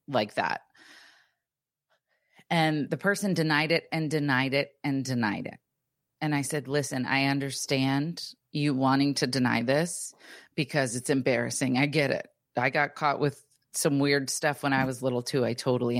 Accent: American